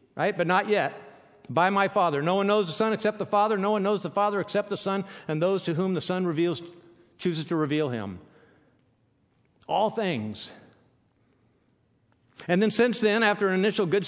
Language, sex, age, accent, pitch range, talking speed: English, male, 50-69, American, 145-205 Hz, 190 wpm